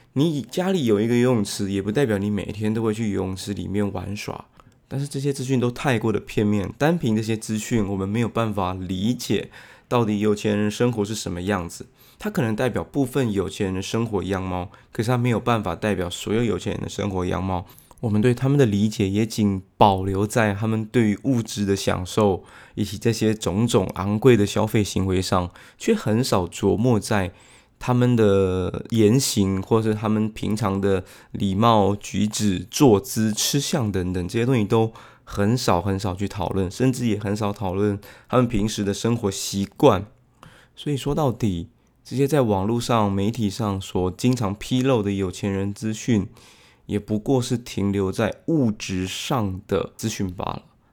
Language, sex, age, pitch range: Chinese, male, 20-39, 100-120 Hz